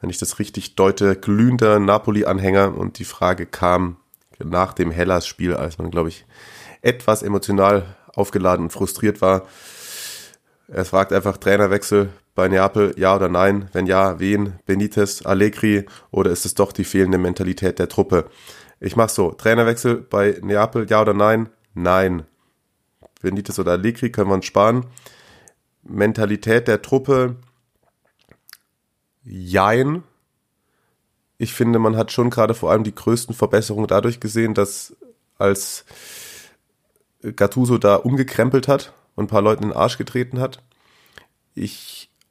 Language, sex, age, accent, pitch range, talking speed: German, male, 30-49, German, 95-115 Hz, 140 wpm